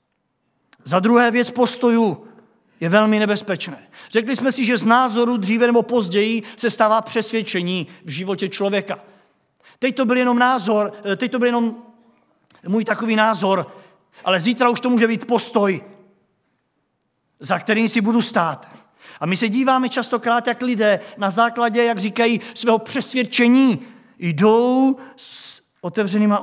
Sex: male